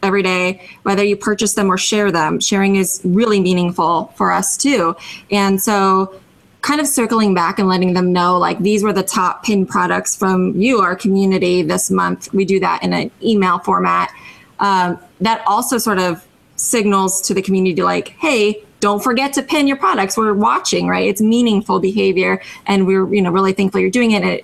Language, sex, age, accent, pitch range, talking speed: English, female, 20-39, American, 185-215 Hz, 190 wpm